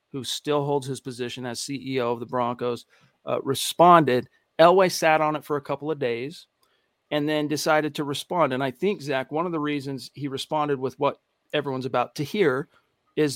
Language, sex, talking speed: English, male, 195 wpm